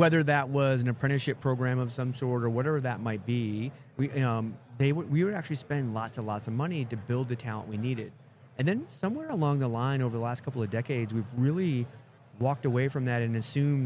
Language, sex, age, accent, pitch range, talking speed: English, male, 30-49, American, 115-135 Hz, 230 wpm